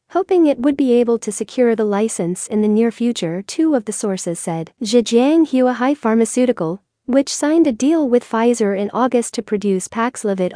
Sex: female